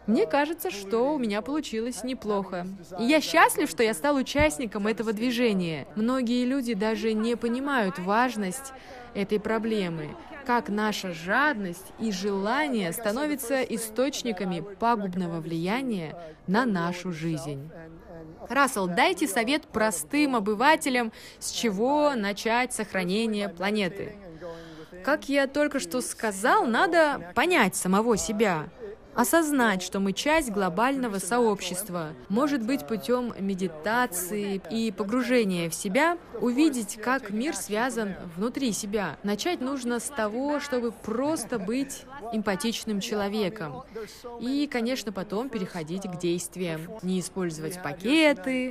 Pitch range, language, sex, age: 195-255 Hz, Russian, female, 20-39